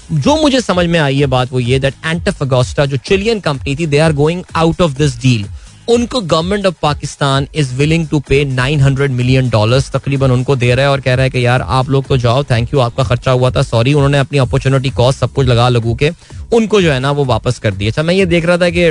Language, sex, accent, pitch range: Hindi, male, native, 125-160 Hz